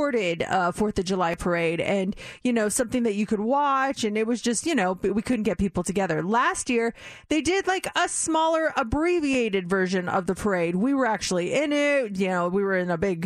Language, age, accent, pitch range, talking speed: English, 30-49, American, 180-240 Hz, 215 wpm